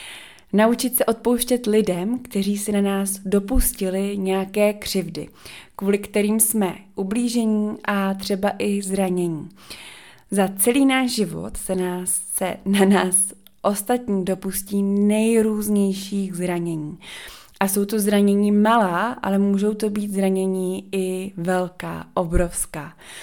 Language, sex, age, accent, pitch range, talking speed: Czech, female, 20-39, native, 185-210 Hz, 115 wpm